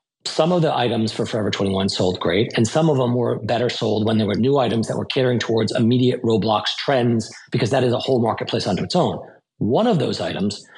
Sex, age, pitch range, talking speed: male, 40-59, 115-145 Hz, 230 wpm